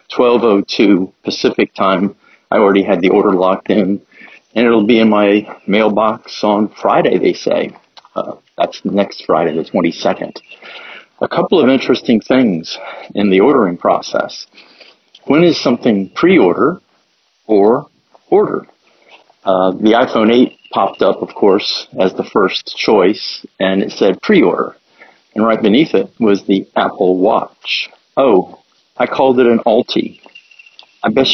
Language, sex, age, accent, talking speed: English, male, 50-69, American, 140 wpm